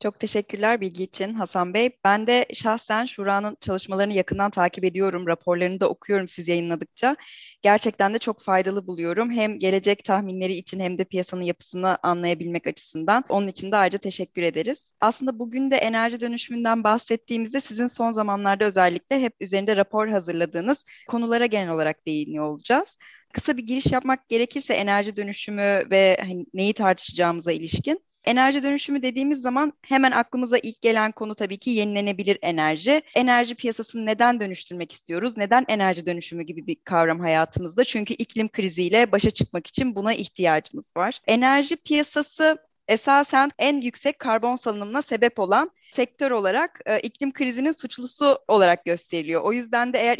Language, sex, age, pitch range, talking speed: Turkish, female, 10-29, 190-250 Hz, 150 wpm